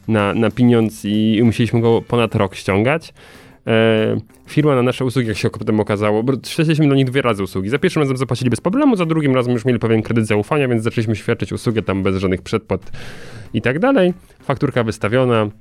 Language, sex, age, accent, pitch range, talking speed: Polish, male, 30-49, native, 100-125 Hz, 205 wpm